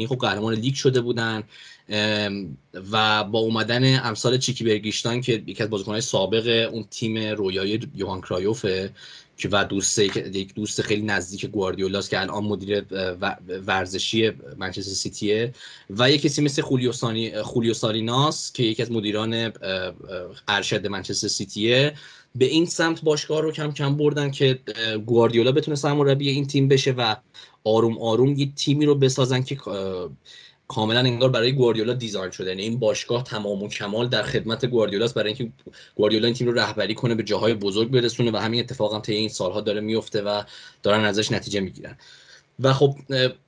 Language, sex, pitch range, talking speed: English, male, 105-135 Hz, 155 wpm